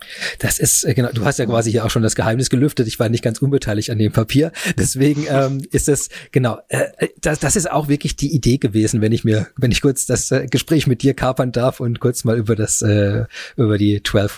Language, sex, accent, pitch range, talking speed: German, male, German, 115-135 Hz, 235 wpm